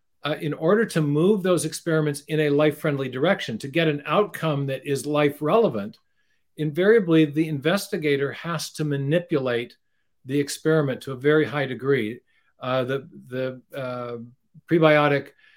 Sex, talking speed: male, 140 wpm